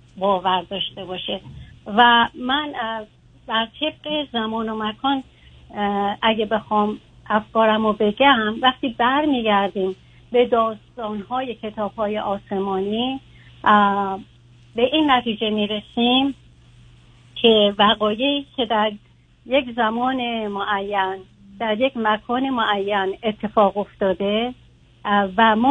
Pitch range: 200-245 Hz